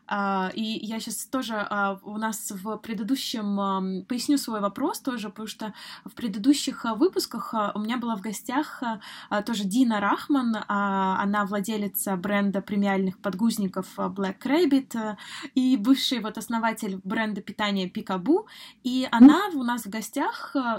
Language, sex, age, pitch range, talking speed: Russian, female, 20-39, 205-255 Hz, 130 wpm